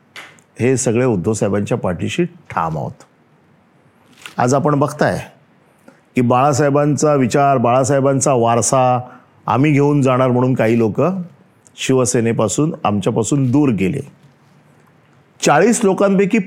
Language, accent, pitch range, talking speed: Marathi, native, 130-190 Hz, 95 wpm